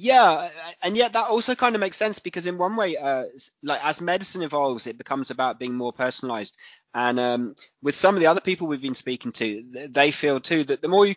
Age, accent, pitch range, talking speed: 30-49, British, 125-155 Hz, 230 wpm